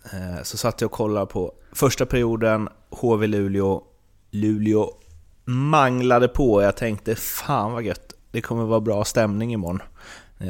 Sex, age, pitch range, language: male, 30-49, 95-110 Hz, Swedish